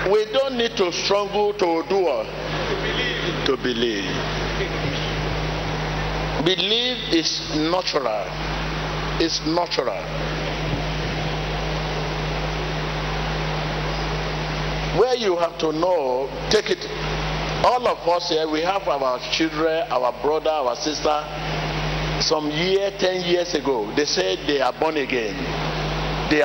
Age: 50-69